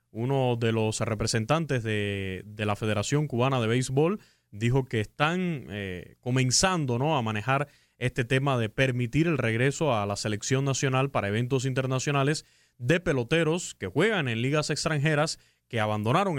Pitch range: 115-150 Hz